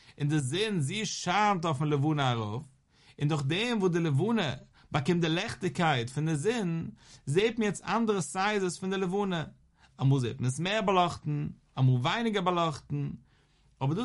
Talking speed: 190 wpm